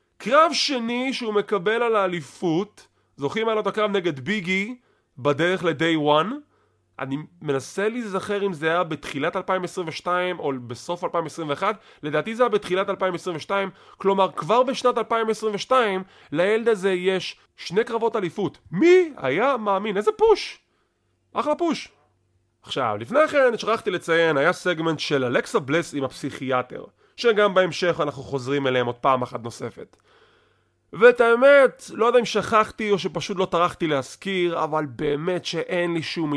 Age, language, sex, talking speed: 20-39, English, male, 125 wpm